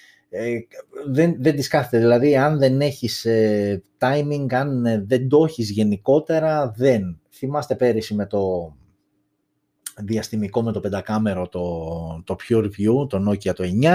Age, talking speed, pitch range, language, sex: 30-49, 130 wpm, 105-130 Hz, Greek, male